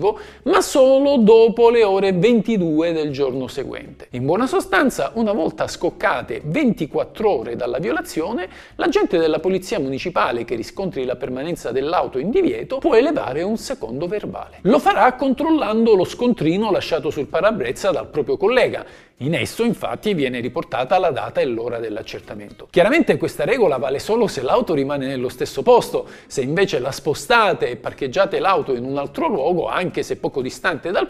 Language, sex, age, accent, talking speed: Italian, male, 50-69, native, 160 wpm